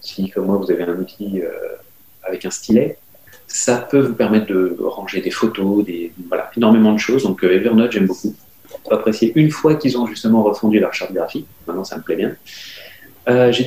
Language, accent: French, French